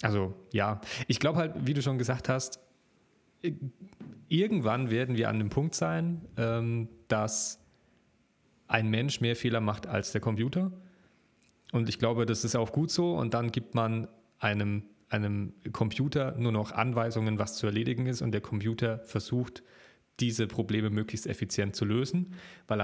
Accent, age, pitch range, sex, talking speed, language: German, 30-49, 110-125 Hz, male, 155 wpm, German